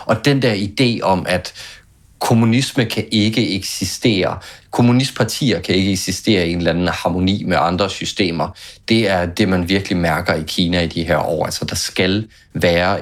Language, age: Danish, 30-49